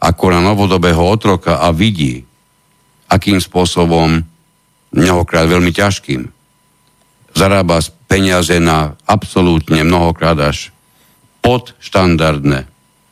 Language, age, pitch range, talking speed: Slovak, 60-79, 80-100 Hz, 80 wpm